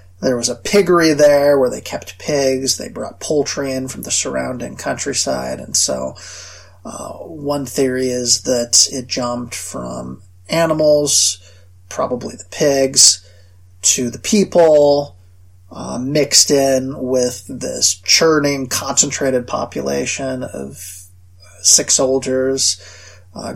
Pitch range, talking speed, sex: 90-135 Hz, 115 wpm, male